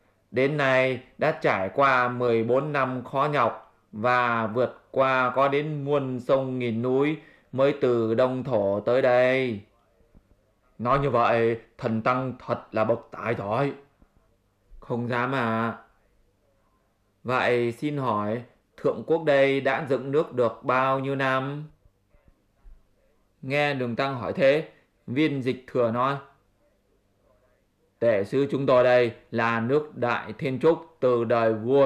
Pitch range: 115-135 Hz